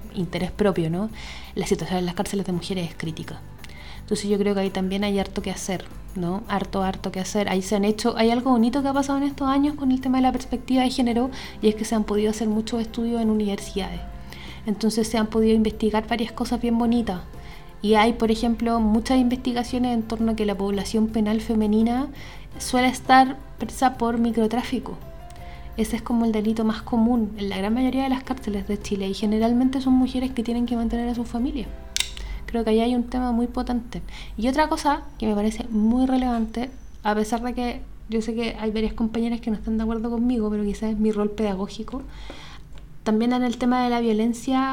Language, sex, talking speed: Spanish, female, 215 wpm